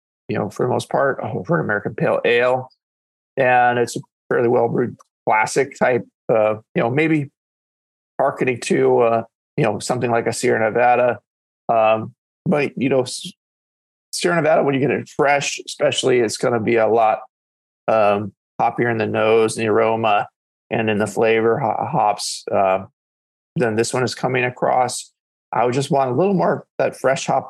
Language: English